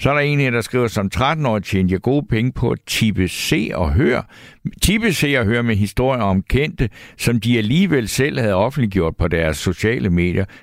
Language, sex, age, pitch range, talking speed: Danish, male, 60-79, 95-130 Hz, 190 wpm